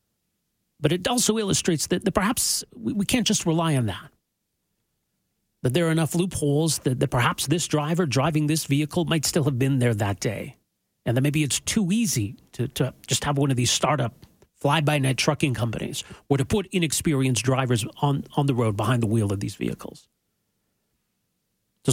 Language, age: English, 40-59